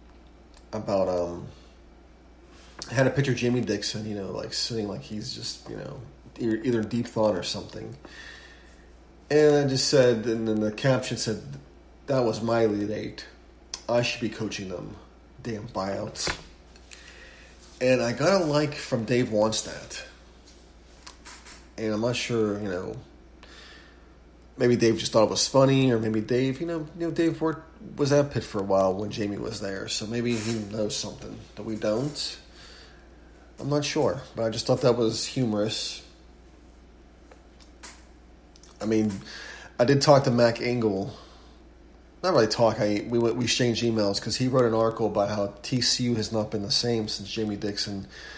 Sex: male